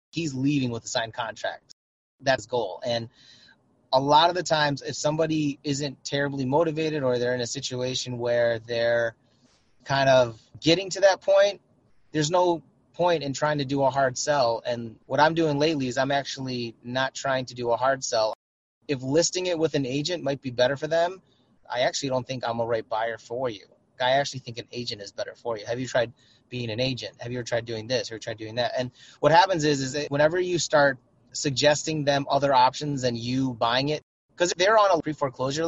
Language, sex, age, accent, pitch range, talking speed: English, male, 30-49, American, 120-145 Hz, 210 wpm